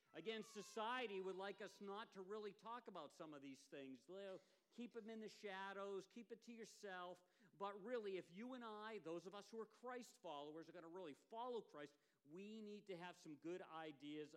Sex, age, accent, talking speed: male, 50-69, American, 200 wpm